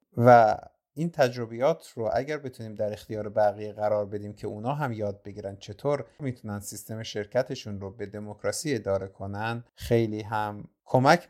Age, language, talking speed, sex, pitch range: 50-69, Persian, 150 wpm, male, 110-135 Hz